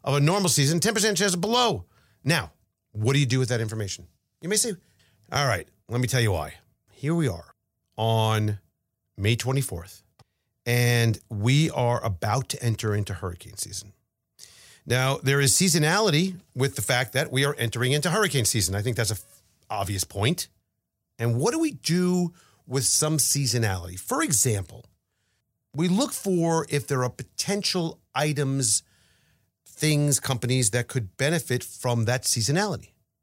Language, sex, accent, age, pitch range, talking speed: English, male, American, 40-59, 110-150 Hz, 155 wpm